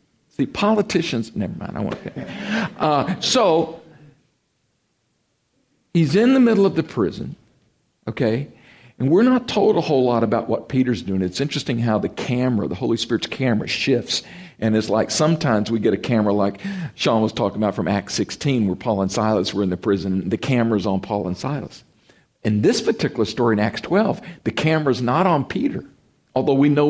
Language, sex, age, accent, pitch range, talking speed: English, male, 50-69, American, 110-160 Hz, 185 wpm